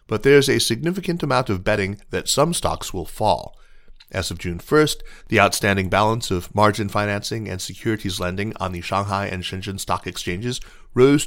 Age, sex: 30-49, male